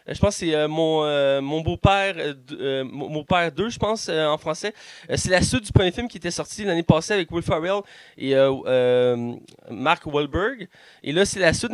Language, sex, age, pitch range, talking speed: French, male, 20-39, 150-195 Hz, 240 wpm